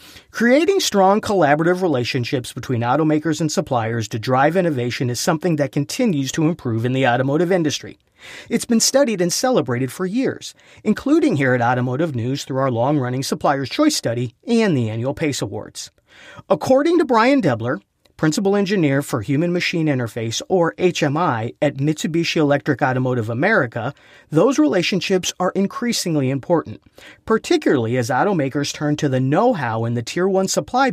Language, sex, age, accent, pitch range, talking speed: English, male, 40-59, American, 130-190 Hz, 150 wpm